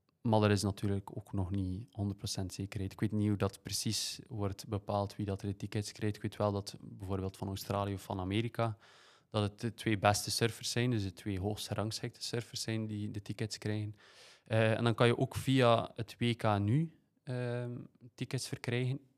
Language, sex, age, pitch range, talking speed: Dutch, male, 20-39, 100-120 Hz, 195 wpm